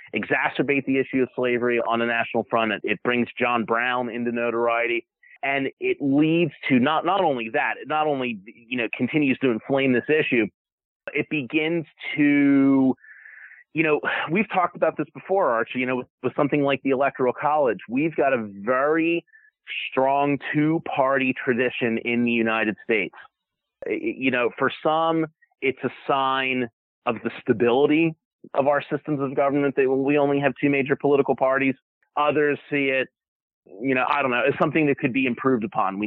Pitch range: 120-145 Hz